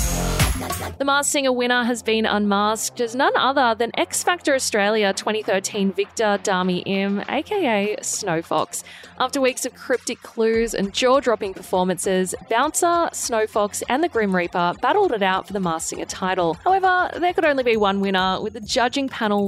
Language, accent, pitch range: English, Australian, 180-250 Hz